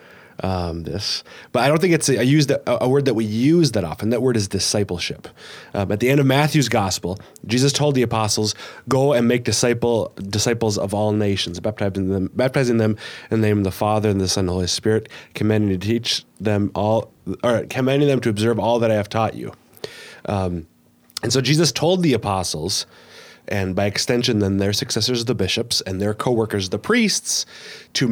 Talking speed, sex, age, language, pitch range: 200 wpm, male, 20-39, English, 95-120 Hz